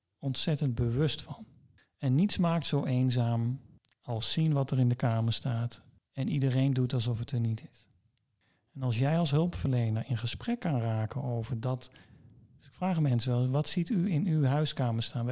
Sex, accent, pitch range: male, Dutch, 120-145 Hz